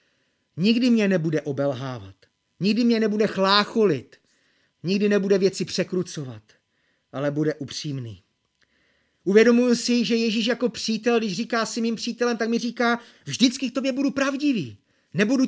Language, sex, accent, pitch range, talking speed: Czech, male, native, 155-210 Hz, 135 wpm